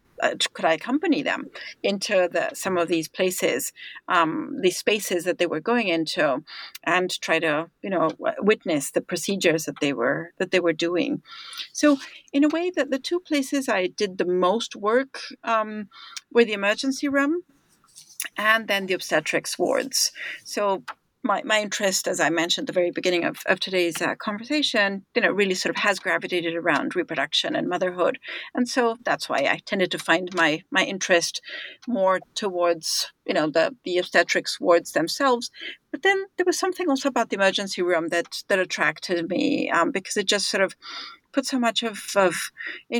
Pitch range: 180-250 Hz